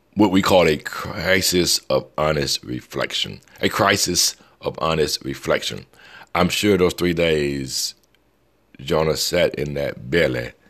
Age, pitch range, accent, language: 60-79, 70-90 Hz, American, English